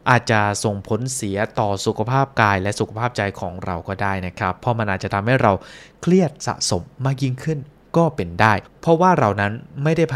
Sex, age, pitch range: male, 20-39, 100-135 Hz